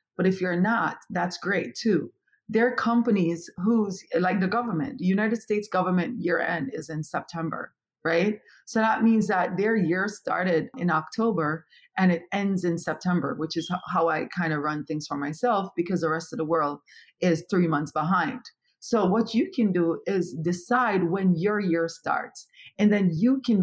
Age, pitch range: 40-59, 175-230 Hz